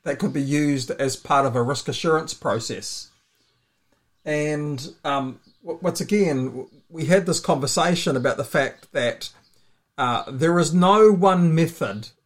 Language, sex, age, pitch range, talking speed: English, male, 50-69, 130-165 Hz, 140 wpm